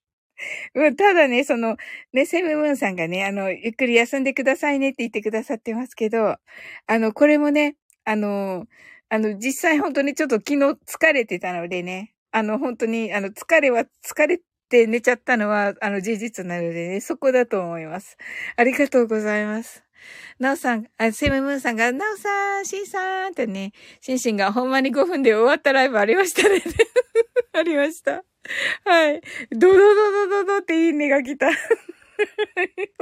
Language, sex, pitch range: Japanese, female, 235-340 Hz